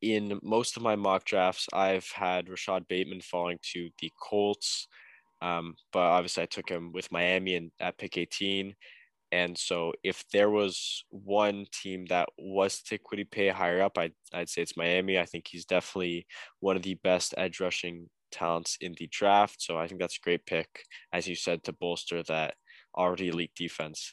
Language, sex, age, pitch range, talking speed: English, male, 10-29, 85-100 Hz, 185 wpm